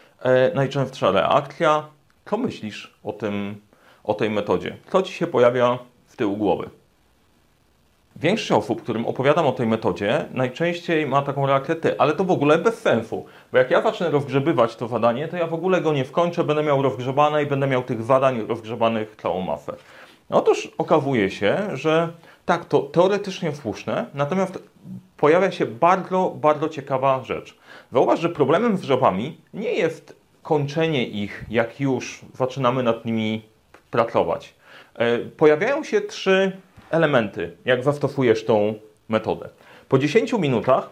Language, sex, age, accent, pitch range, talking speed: Polish, male, 30-49, native, 120-165 Hz, 145 wpm